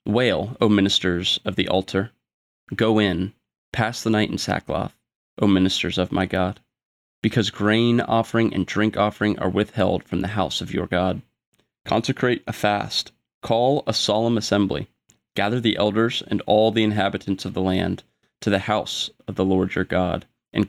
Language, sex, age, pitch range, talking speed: English, male, 30-49, 95-110 Hz, 170 wpm